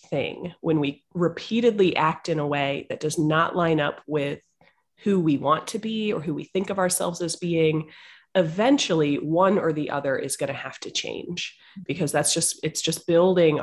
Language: English